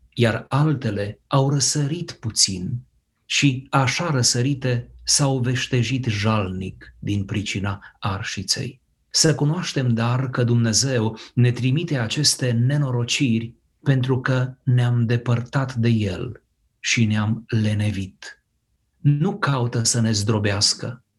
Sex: male